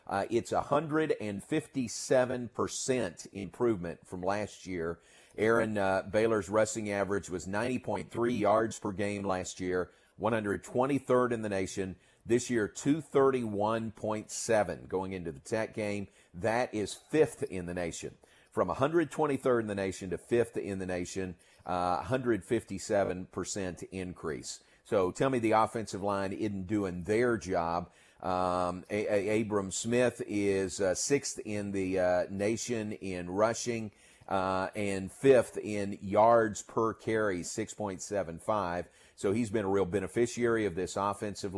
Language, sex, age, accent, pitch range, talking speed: English, male, 40-59, American, 95-115 Hz, 130 wpm